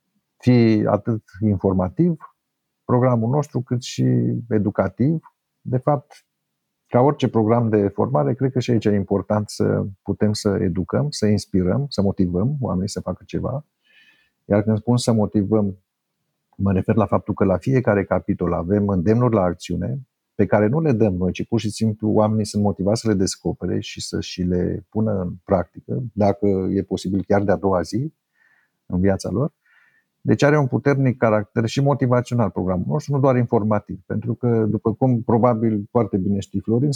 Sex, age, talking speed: male, 50-69, 170 wpm